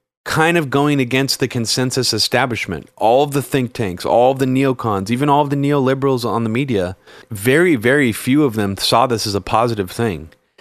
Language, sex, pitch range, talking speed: English, male, 105-130 Hz, 200 wpm